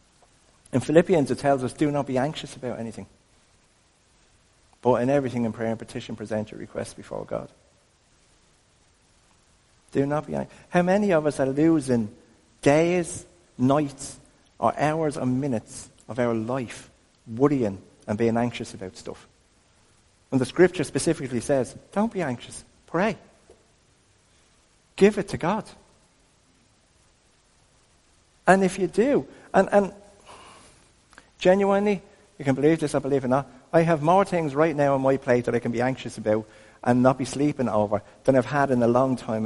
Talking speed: 160 wpm